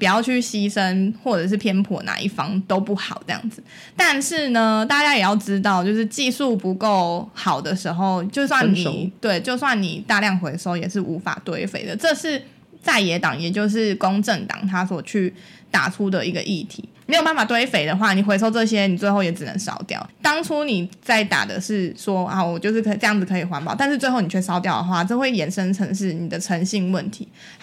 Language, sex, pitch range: Chinese, female, 185-225 Hz